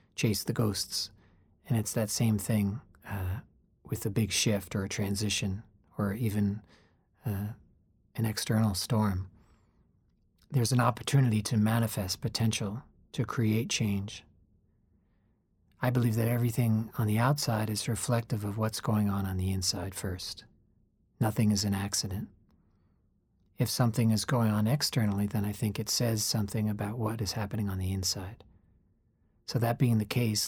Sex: male